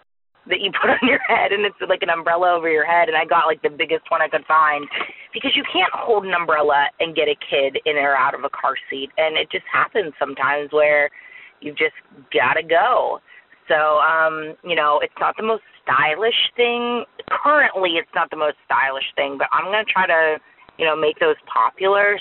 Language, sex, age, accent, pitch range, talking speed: English, female, 30-49, American, 160-215 Hz, 210 wpm